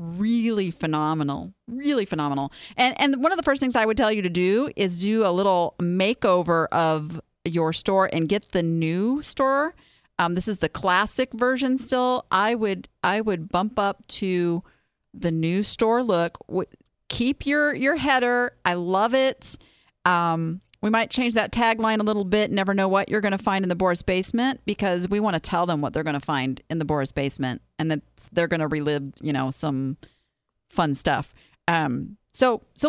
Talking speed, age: 190 wpm, 40-59